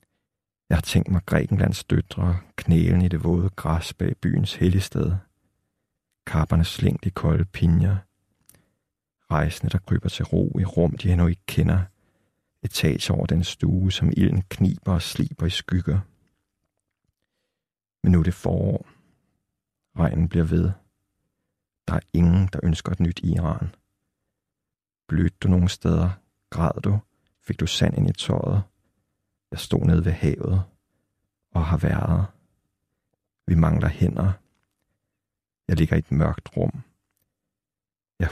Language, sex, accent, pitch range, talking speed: Danish, male, native, 85-100 Hz, 135 wpm